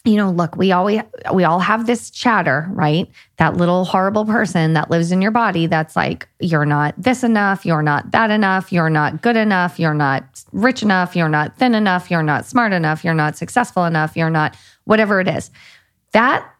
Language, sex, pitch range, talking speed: English, female, 165-210 Hz, 200 wpm